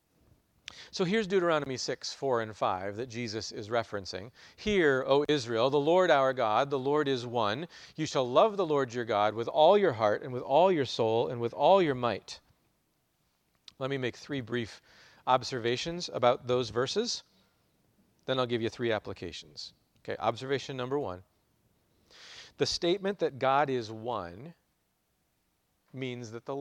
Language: English